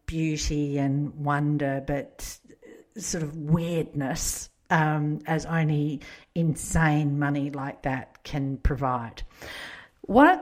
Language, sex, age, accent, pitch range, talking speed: English, female, 50-69, Australian, 155-220 Hz, 100 wpm